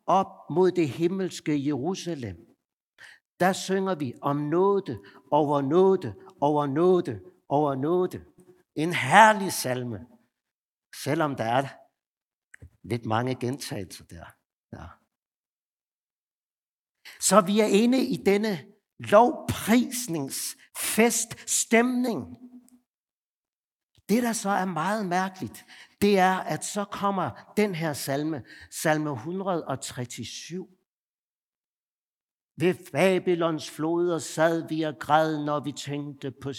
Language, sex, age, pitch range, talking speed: Danish, male, 60-79, 145-195 Hz, 100 wpm